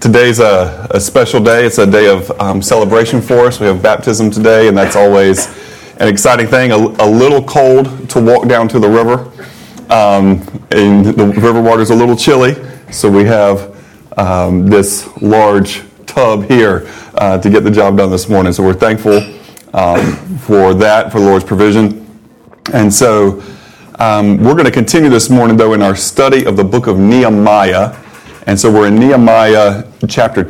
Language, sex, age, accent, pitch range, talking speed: English, male, 30-49, American, 100-115 Hz, 180 wpm